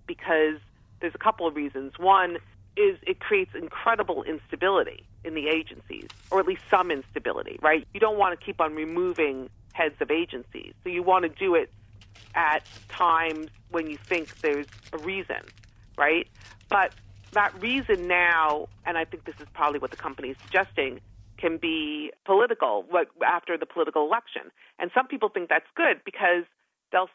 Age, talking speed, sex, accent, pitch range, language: 40-59, 170 wpm, female, American, 155-220 Hz, English